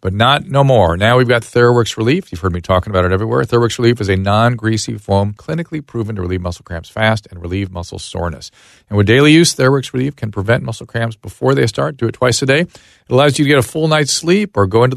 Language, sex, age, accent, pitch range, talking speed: English, male, 40-59, American, 95-125 Hz, 255 wpm